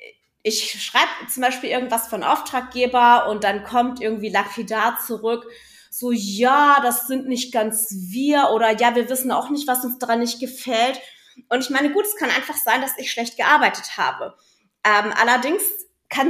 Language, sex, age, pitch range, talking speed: German, female, 30-49, 230-275 Hz, 175 wpm